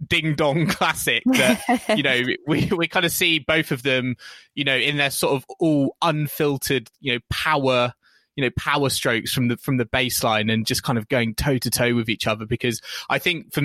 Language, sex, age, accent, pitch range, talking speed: English, male, 20-39, British, 120-155 Hz, 215 wpm